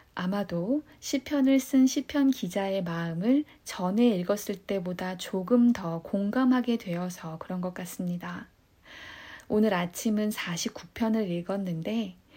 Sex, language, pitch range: female, Korean, 180-235 Hz